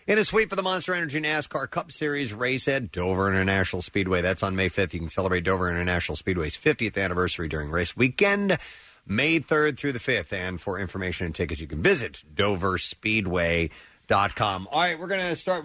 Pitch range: 95-125 Hz